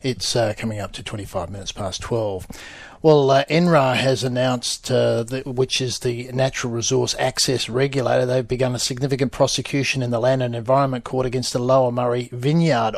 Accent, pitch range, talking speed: Australian, 120-140 Hz, 180 wpm